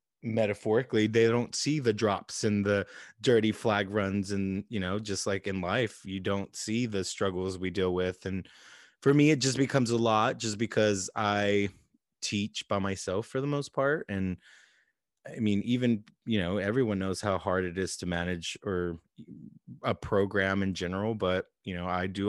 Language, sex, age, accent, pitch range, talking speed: English, male, 20-39, American, 95-115 Hz, 185 wpm